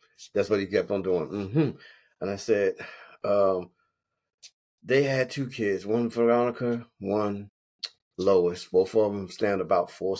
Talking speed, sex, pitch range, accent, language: 155 wpm, male, 90-130 Hz, American, English